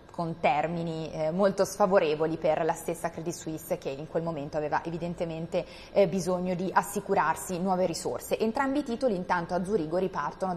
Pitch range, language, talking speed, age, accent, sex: 165-200 Hz, Italian, 155 wpm, 20-39, native, female